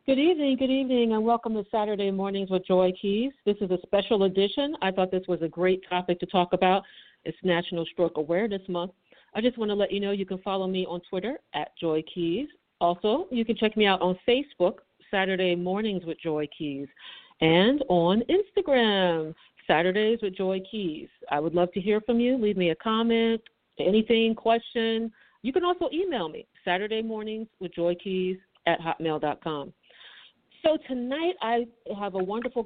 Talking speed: 180 wpm